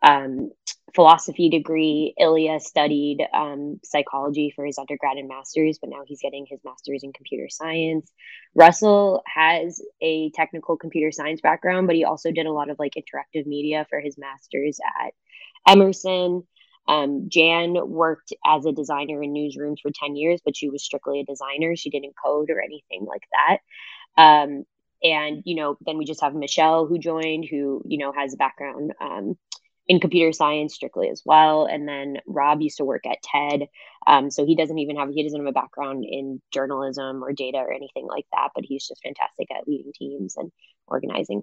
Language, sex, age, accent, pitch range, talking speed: English, female, 20-39, American, 145-170 Hz, 185 wpm